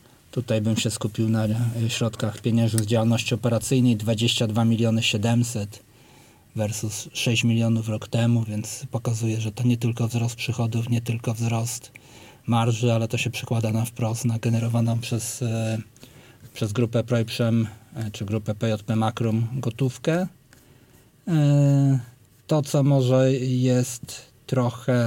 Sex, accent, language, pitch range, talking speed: male, native, Polish, 115-125 Hz, 125 wpm